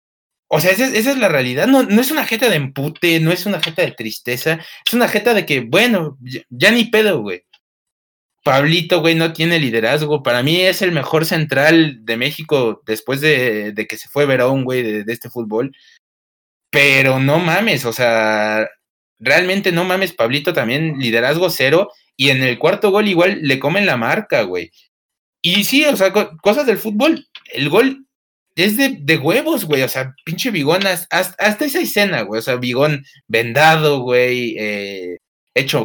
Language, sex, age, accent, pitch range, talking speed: Spanish, male, 30-49, Mexican, 120-180 Hz, 180 wpm